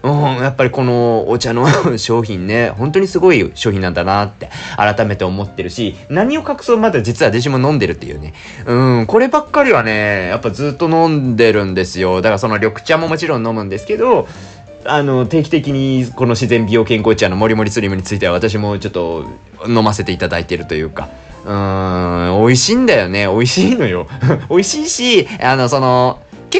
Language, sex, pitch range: Japanese, male, 100-155 Hz